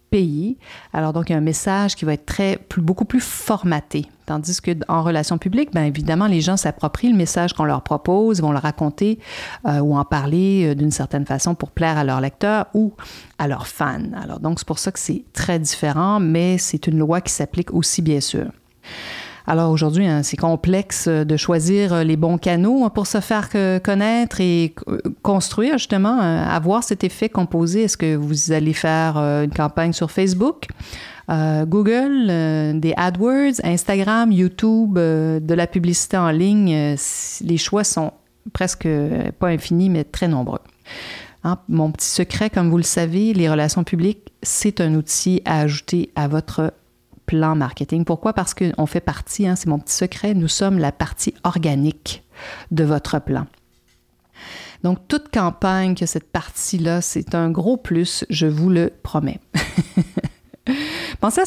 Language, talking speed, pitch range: French, 170 wpm, 155-200 Hz